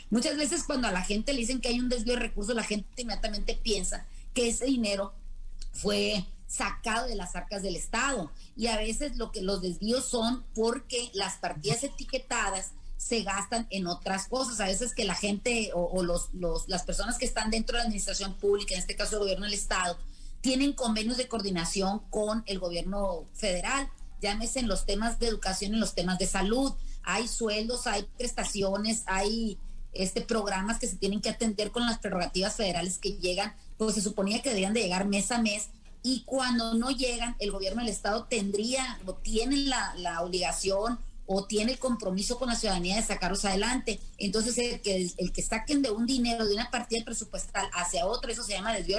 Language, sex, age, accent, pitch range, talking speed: Spanish, female, 30-49, Mexican, 195-235 Hz, 195 wpm